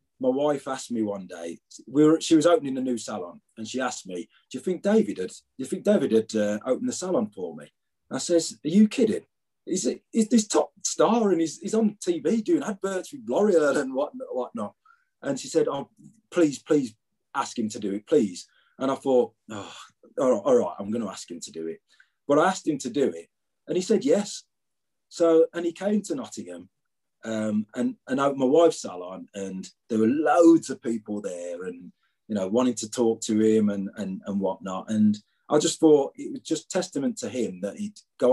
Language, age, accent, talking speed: English, 30-49, British, 220 wpm